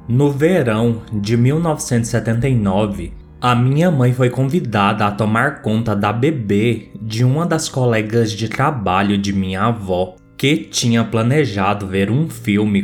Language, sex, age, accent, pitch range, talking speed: Portuguese, male, 20-39, Brazilian, 100-130 Hz, 135 wpm